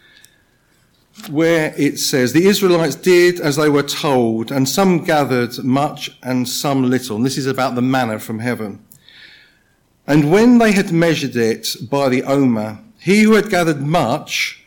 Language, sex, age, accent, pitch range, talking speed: English, male, 50-69, British, 120-155 Hz, 160 wpm